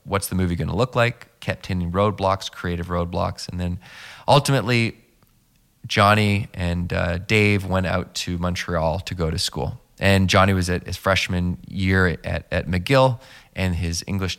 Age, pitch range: 20-39, 85-105 Hz